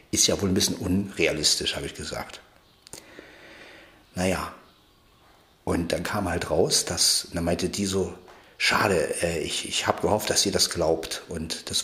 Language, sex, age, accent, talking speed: German, male, 50-69, German, 160 wpm